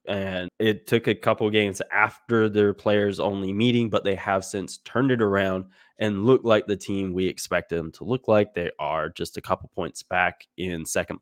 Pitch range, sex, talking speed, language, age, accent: 95-110 Hz, male, 205 wpm, English, 20-39, American